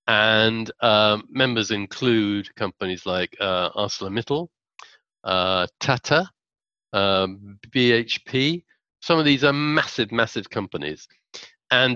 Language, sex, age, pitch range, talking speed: English, male, 40-59, 110-150 Hz, 100 wpm